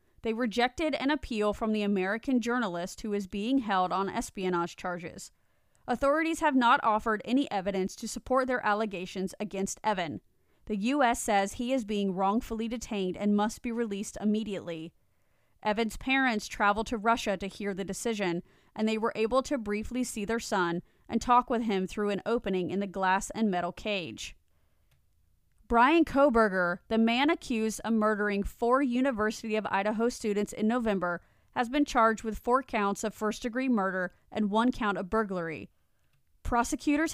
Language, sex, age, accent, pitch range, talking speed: English, female, 30-49, American, 195-245 Hz, 165 wpm